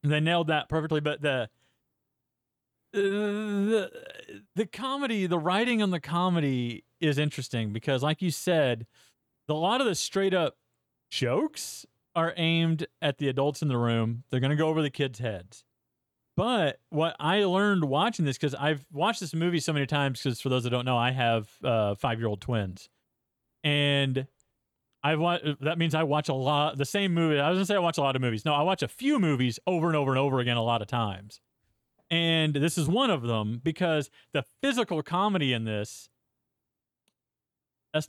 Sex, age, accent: male, 30-49, American